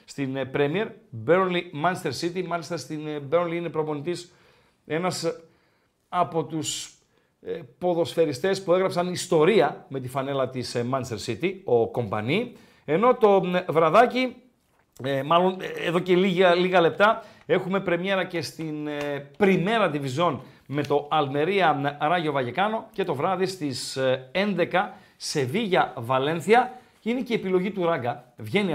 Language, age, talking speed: Greek, 50-69, 120 wpm